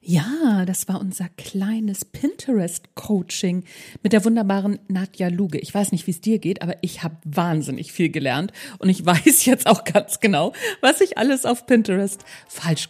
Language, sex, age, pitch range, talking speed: German, female, 50-69, 175-230 Hz, 170 wpm